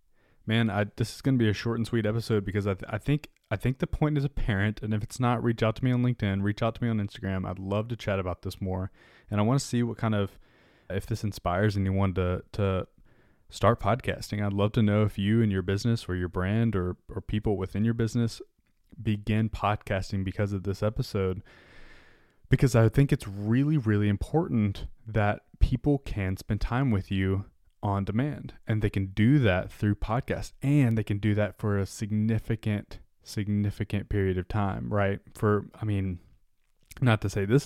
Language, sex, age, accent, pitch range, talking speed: English, male, 20-39, American, 100-115 Hz, 205 wpm